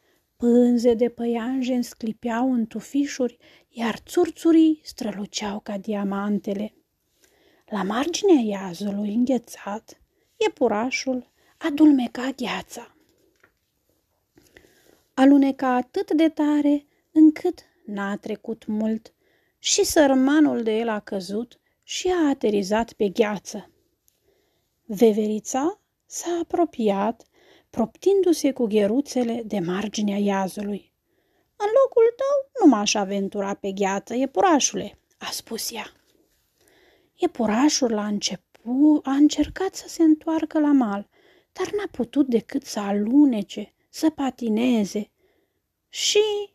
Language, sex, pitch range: Romanian, female, 210-300 Hz